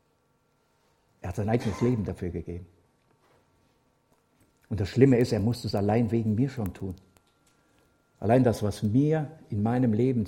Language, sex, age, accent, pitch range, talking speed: German, male, 60-79, German, 100-130 Hz, 150 wpm